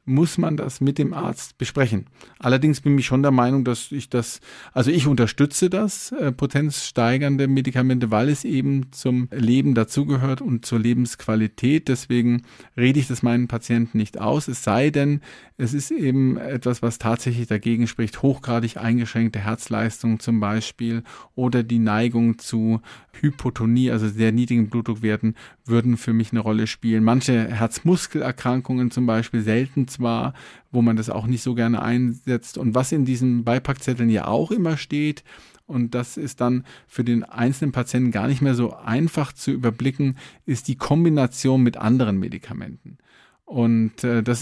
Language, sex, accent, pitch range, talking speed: German, male, German, 115-135 Hz, 160 wpm